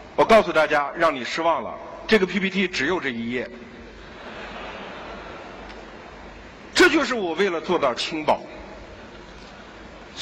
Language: Chinese